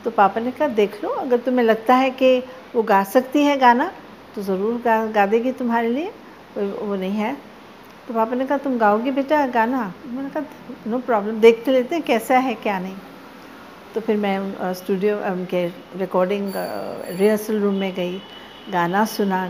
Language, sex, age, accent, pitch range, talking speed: Hindi, female, 60-79, native, 200-260 Hz, 180 wpm